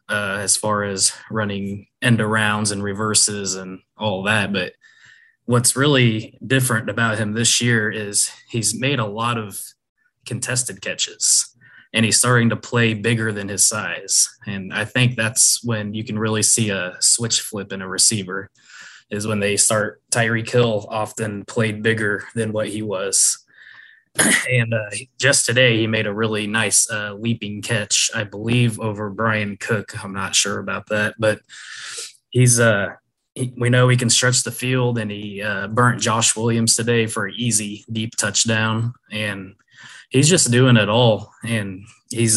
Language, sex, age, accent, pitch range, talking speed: English, male, 20-39, American, 105-120 Hz, 165 wpm